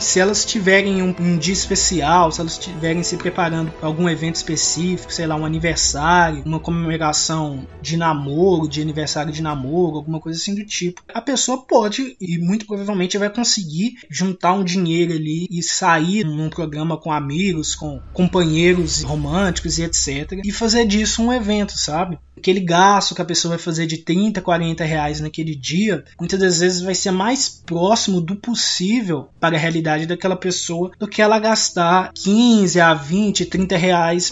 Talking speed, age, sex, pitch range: 170 wpm, 20-39, male, 165-210 Hz